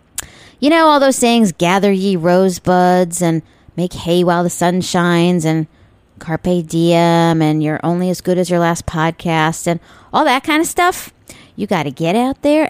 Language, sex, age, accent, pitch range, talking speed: English, female, 40-59, American, 170-245 Hz, 185 wpm